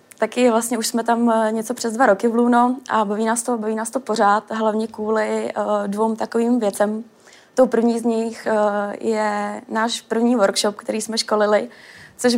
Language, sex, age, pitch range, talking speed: Czech, female, 20-39, 210-230 Hz, 175 wpm